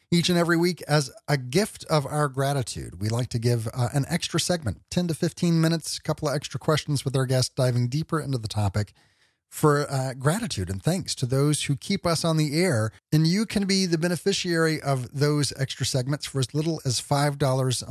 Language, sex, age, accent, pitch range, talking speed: English, male, 40-59, American, 125-155 Hz, 210 wpm